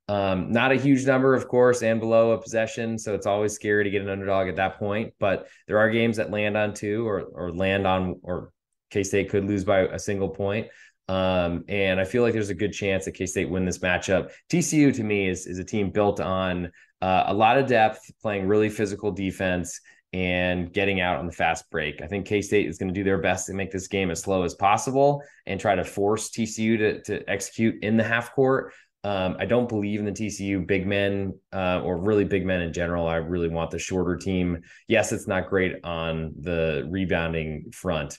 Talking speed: 220 wpm